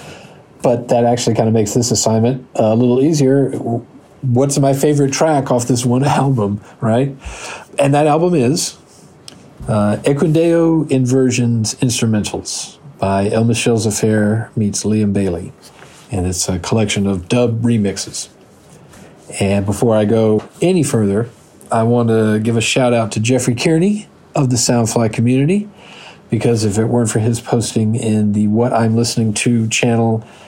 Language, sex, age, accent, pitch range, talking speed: English, male, 40-59, American, 110-140 Hz, 150 wpm